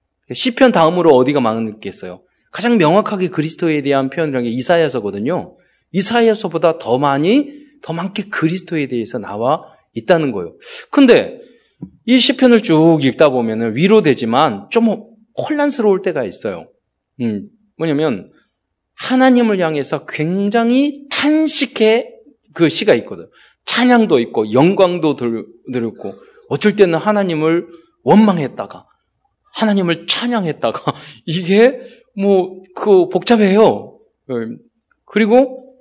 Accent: native